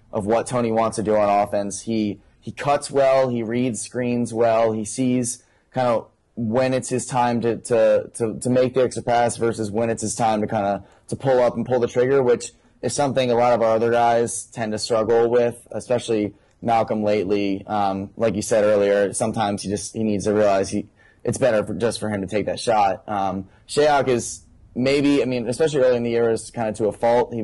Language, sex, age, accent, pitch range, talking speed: English, male, 10-29, American, 105-120 Hz, 225 wpm